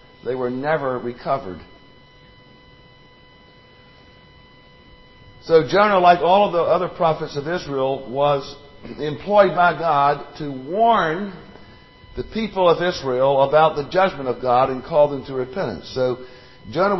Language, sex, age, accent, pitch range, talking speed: English, male, 50-69, American, 125-165 Hz, 125 wpm